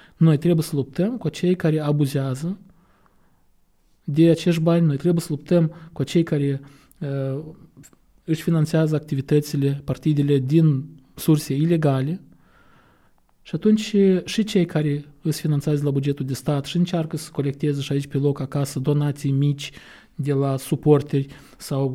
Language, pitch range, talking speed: Romanian, 140-170 Hz, 140 wpm